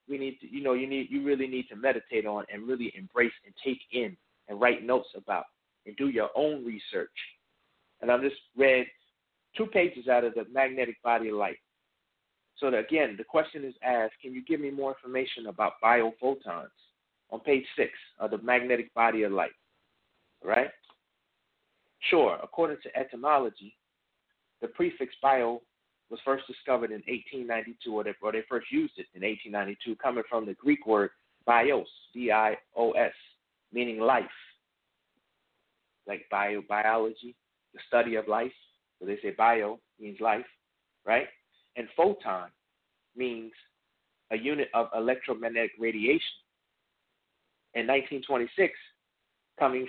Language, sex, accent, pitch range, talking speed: English, male, American, 115-135 Hz, 145 wpm